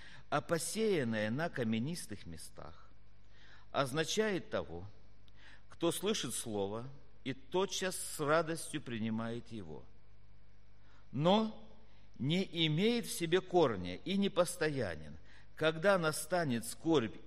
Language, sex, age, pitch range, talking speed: Russian, male, 50-69, 100-130 Hz, 95 wpm